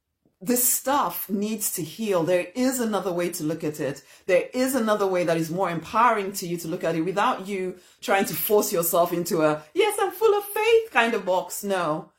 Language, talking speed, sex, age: English, 215 wpm, female, 30-49